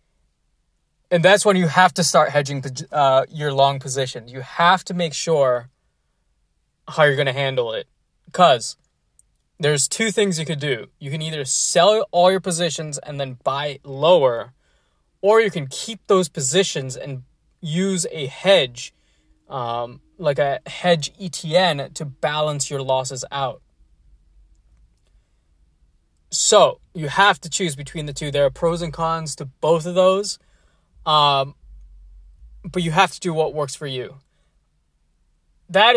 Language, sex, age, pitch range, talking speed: English, male, 20-39, 125-165 Hz, 150 wpm